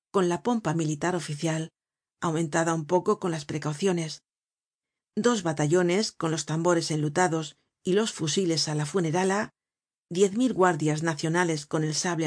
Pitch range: 155-185 Hz